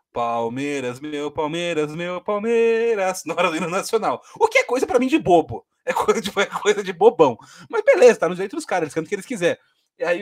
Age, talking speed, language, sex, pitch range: 20-39, 235 wpm, Portuguese, male, 150-205 Hz